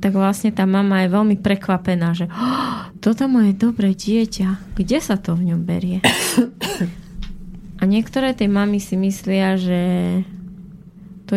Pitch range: 180-200 Hz